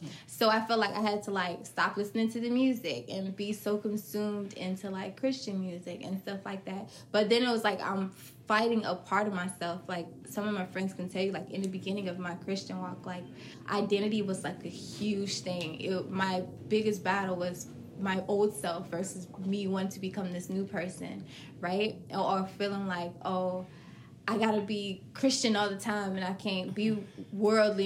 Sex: female